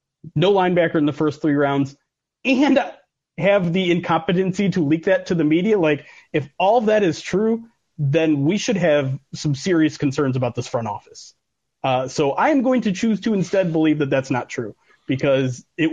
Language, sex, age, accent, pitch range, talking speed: English, male, 30-49, American, 140-180 Hz, 190 wpm